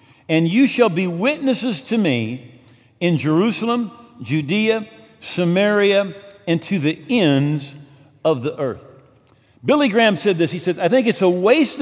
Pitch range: 155-215 Hz